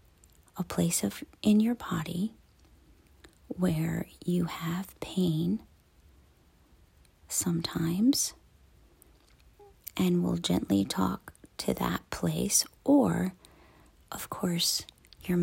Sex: female